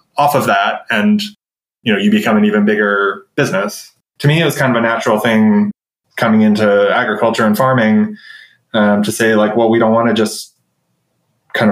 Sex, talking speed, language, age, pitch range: male, 190 wpm, English, 20-39, 105-135 Hz